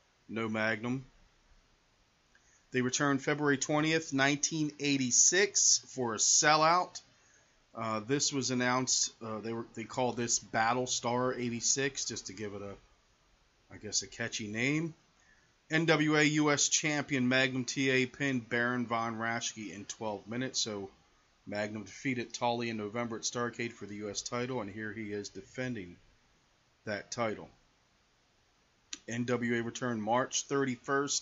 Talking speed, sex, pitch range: 130 wpm, male, 110-140 Hz